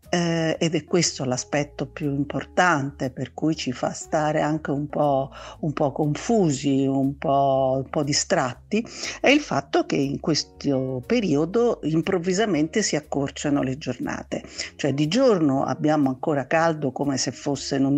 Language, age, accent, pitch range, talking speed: Italian, 50-69, native, 135-185 Hz, 145 wpm